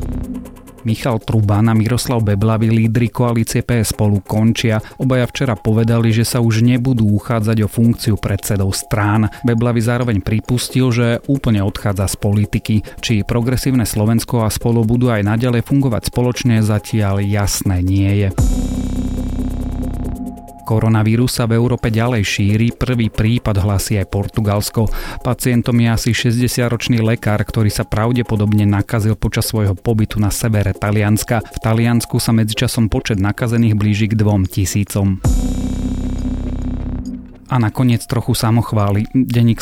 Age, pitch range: 30-49, 100-120 Hz